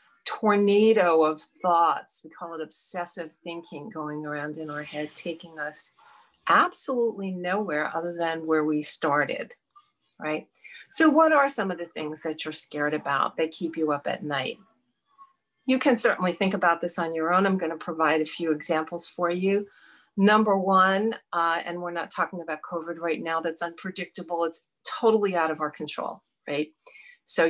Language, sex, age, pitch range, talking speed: English, female, 50-69, 165-205 Hz, 170 wpm